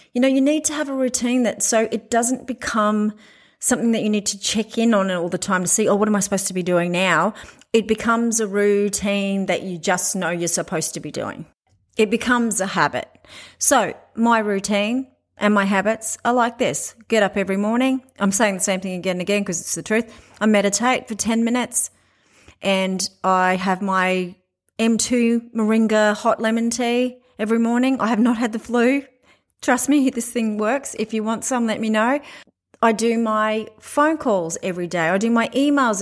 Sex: female